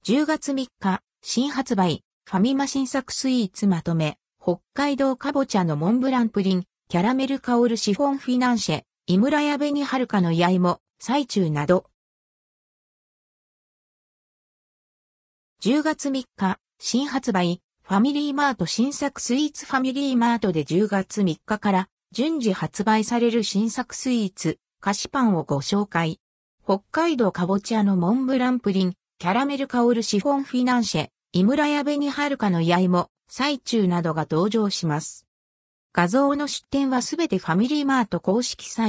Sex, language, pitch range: female, Japanese, 185-270 Hz